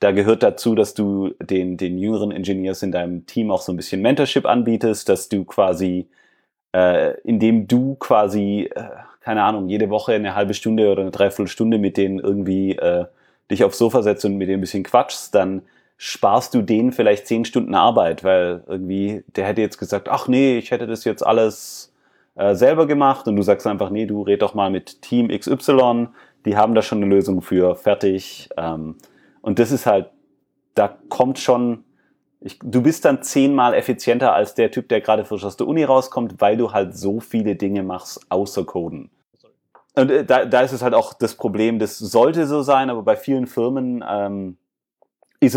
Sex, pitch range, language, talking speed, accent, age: male, 95-115 Hz, German, 195 wpm, German, 30-49